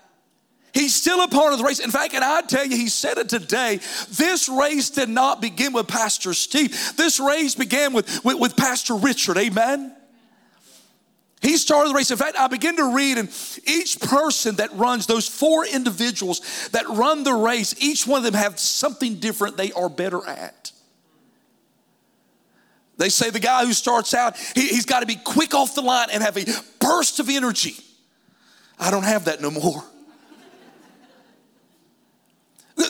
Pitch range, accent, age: 225-285 Hz, American, 40-59